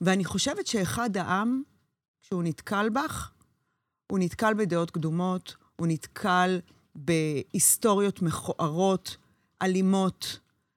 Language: Hebrew